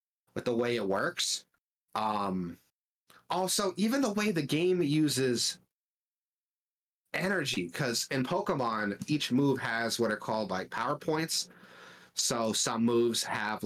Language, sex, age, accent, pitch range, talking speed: English, male, 30-49, American, 105-130 Hz, 130 wpm